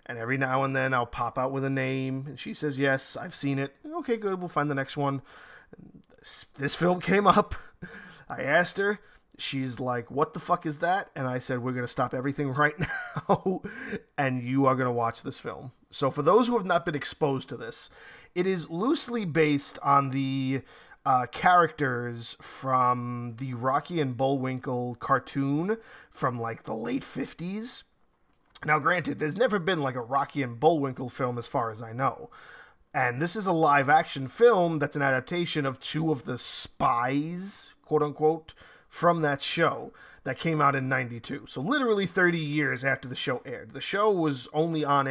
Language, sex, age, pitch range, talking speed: English, male, 30-49, 130-170 Hz, 185 wpm